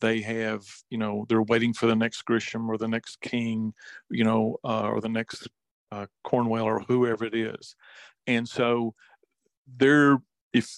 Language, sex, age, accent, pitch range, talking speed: English, male, 50-69, American, 115-130 Hz, 165 wpm